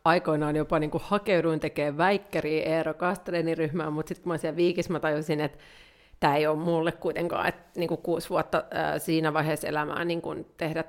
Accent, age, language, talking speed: native, 30-49, Finnish, 175 wpm